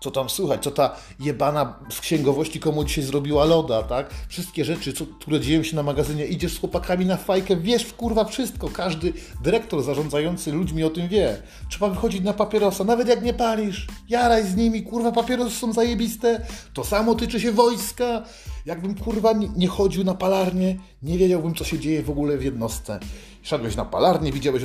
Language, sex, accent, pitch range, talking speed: Polish, male, native, 145-210 Hz, 185 wpm